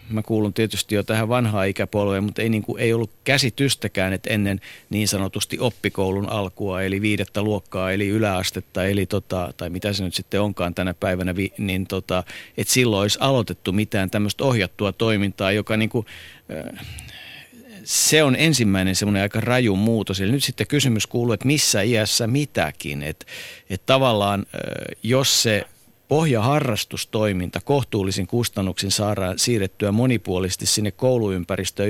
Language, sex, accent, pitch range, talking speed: Finnish, male, native, 100-125 Hz, 145 wpm